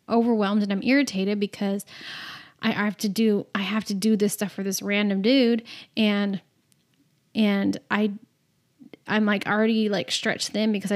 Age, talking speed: 10-29, 160 wpm